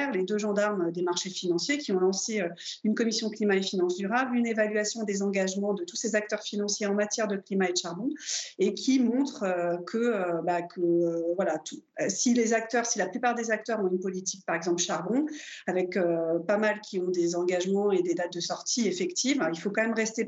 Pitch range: 180-220 Hz